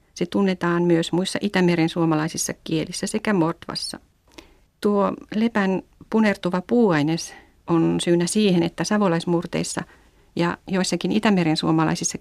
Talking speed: 110 wpm